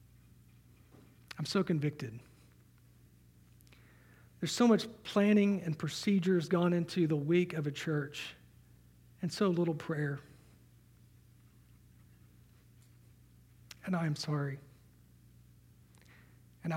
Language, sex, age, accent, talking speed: English, male, 40-59, American, 90 wpm